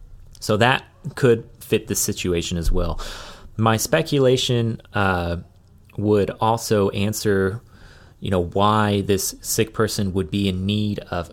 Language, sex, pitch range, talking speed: English, male, 90-105 Hz, 130 wpm